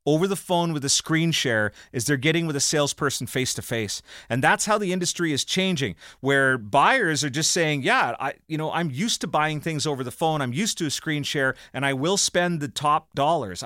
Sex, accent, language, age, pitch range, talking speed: male, American, English, 30-49, 125-160 Hz, 235 wpm